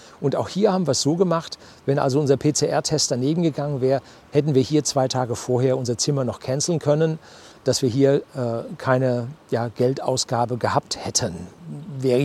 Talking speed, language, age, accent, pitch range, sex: 175 wpm, German, 40-59, German, 125-150 Hz, male